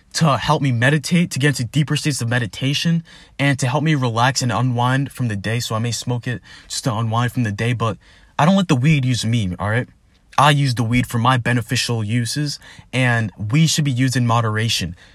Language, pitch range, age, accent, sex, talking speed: English, 115-150 Hz, 20-39, American, male, 225 wpm